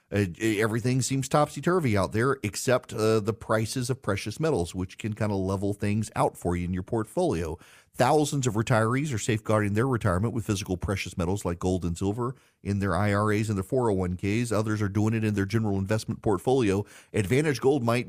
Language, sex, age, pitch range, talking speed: English, male, 40-59, 95-125 Hz, 190 wpm